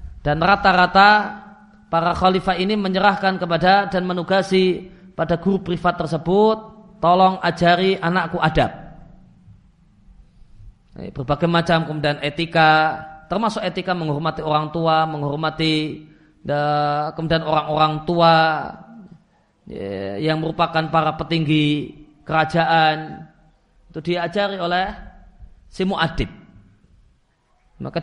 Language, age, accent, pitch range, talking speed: Indonesian, 30-49, native, 155-180 Hz, 90 wpm